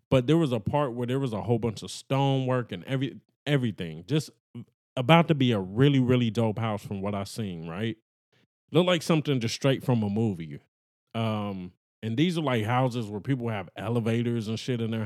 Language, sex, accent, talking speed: English, male, American, 205 wpm